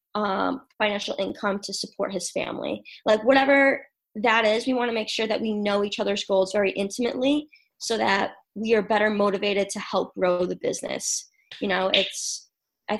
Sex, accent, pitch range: female, American, 195-230 Hz